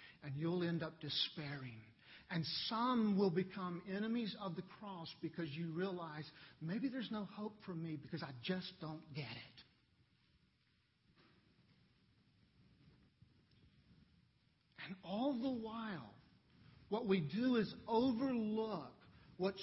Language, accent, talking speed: English, American, 115 wpm